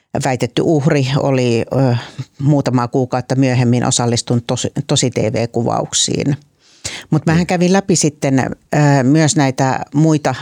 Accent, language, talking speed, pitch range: native, Finnish, 105 wpm, 125-150 Hz